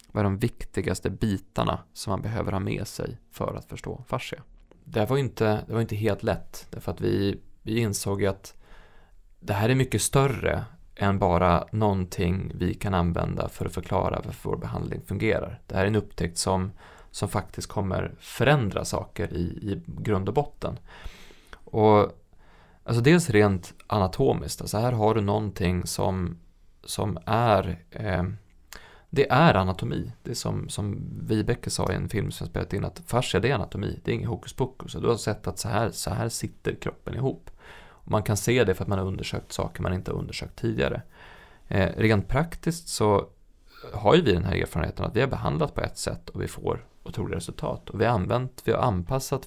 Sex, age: male, 20-39